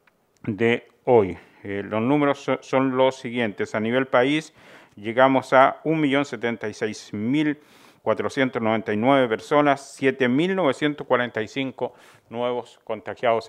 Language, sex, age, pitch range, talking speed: Spanish, male, 50-69, 115-145 Hz, 80 wpm